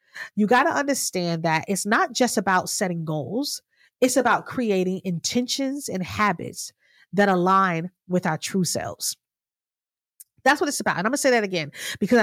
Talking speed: 170 wpm